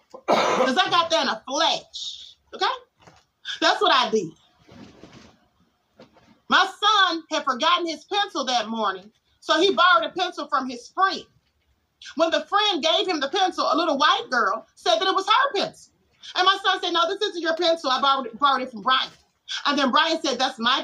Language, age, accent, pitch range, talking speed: English, 30-49, American, 270-360 Hz, 190 wpm